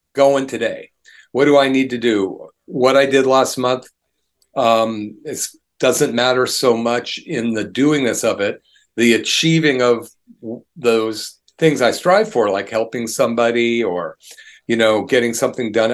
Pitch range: 115-145 Hz